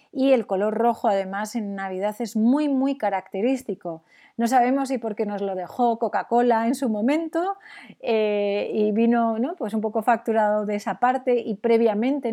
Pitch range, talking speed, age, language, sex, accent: 195-240 Hz, 170 wpm, 30-49, Spanish, female, Spanish